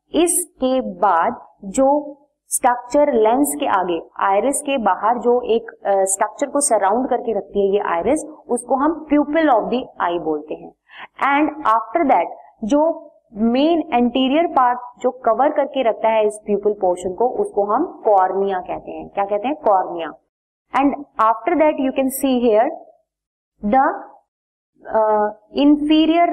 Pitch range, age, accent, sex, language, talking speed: 215-300 Hz, 20-39, native, female, Hindi, 145 wpm